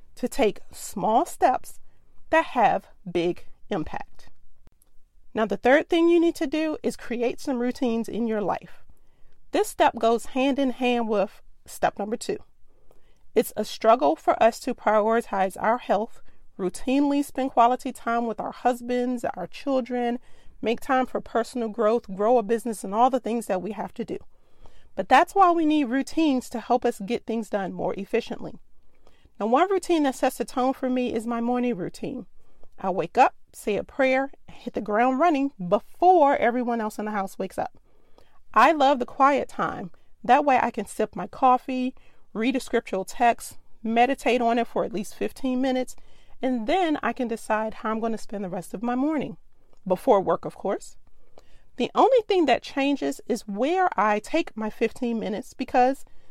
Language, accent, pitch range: English, American, 220-270 Hz